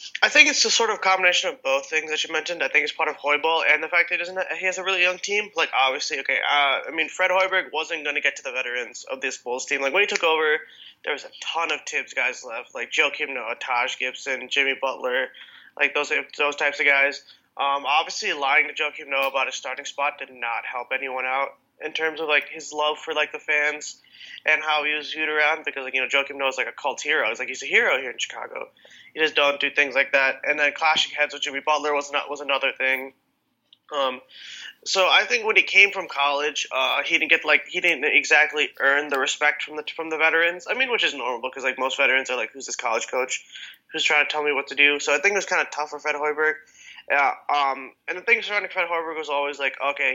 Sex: male